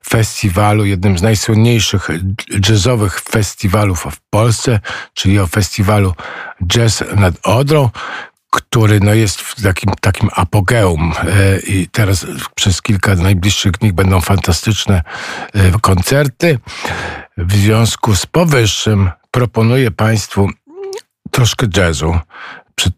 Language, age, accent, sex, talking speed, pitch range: Polish, 50-69, native, male, 100 wpm, 85-110 Hz